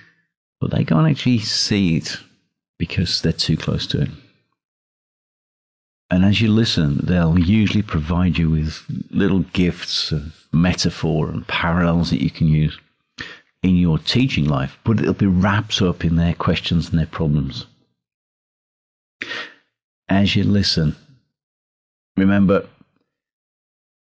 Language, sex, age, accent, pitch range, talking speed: English, male, 50-69, British, 75-95 Hz, 125 wpm